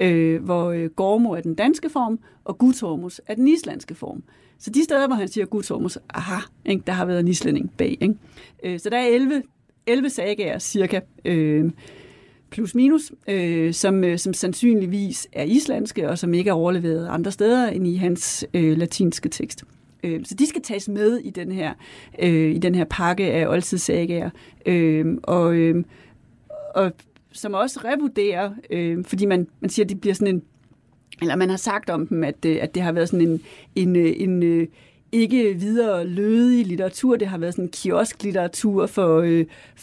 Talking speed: 180 wpm